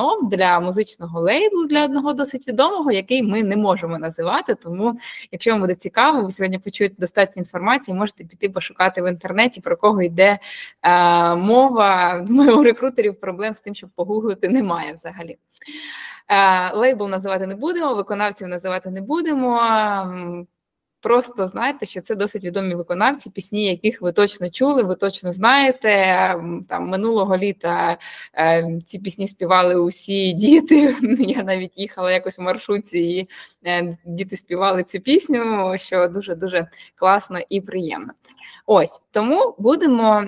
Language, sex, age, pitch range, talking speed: Ukrainian, female, 20-39, 185-230 Hz, 140 wpm